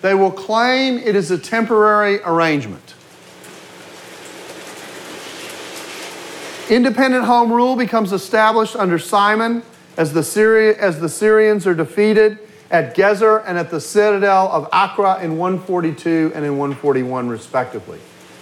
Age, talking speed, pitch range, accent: 40-59, 120 wpm, 155-210 Hz, American